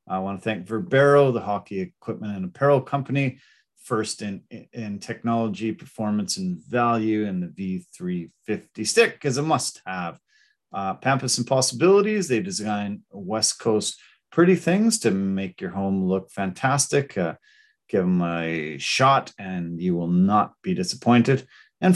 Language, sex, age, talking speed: English, male, 40-59, 145 wpm